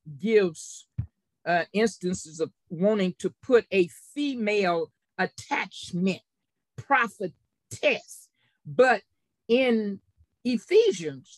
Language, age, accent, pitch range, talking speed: English, 50-69, American, 185-275 Hz, 75 wpm